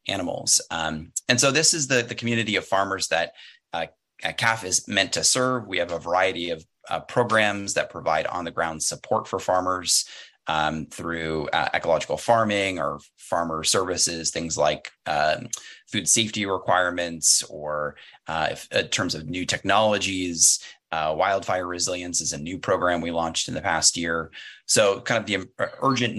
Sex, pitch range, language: male, 85-110 Hz, English